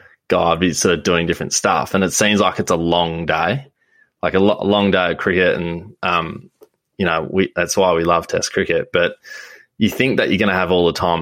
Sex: male